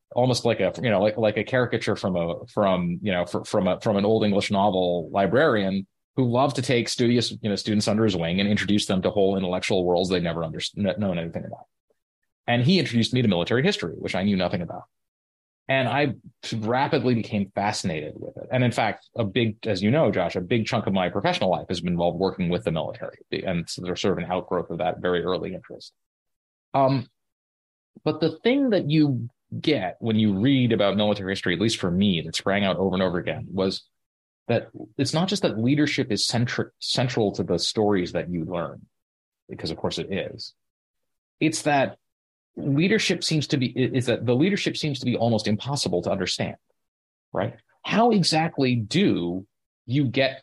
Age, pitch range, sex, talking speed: 30-49, 95-130 Hz, male, 200 wpm